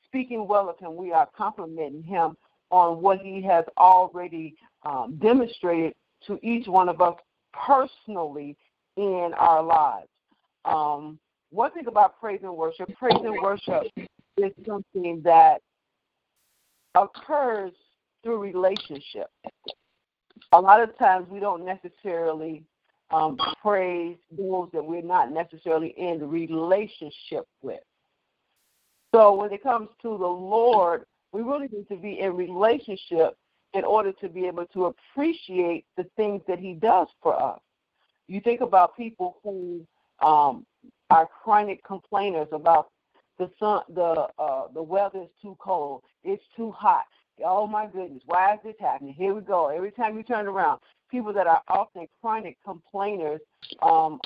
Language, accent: English, American